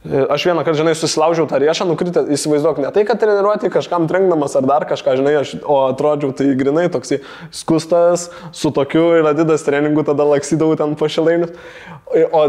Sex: male